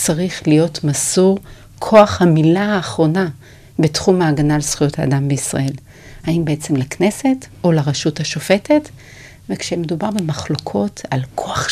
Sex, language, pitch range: female, Hebrew, 150-185 Hz